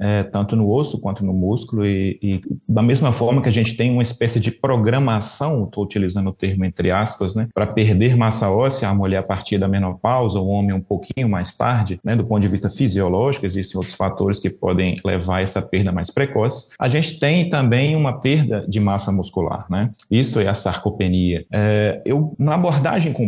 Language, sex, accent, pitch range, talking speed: Portuguese, male, Brazilian, 100-135 Hz, 195 wpm